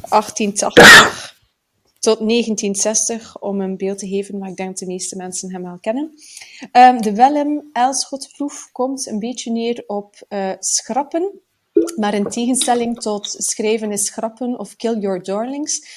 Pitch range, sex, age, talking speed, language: 195-245 Hz, female, 30-49, 135 wpm, Dutch